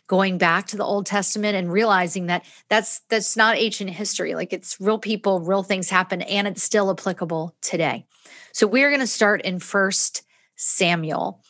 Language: English